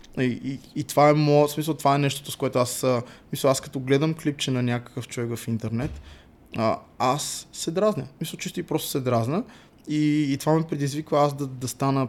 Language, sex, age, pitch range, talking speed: Bulgarian, male, 20-39, 125-155 Hz, 195 wpm